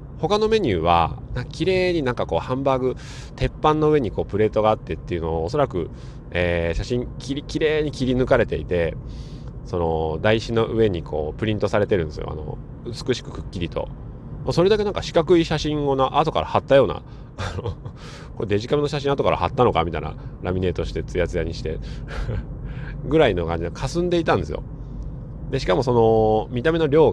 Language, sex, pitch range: Japanese, male, 105-145 Hz